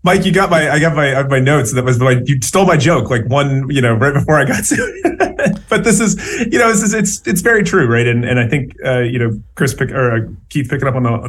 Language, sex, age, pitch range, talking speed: English, male, 30-49, 115-145 Hz, 280 wpm